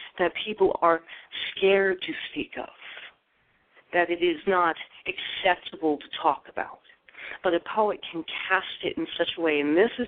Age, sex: 40-59, female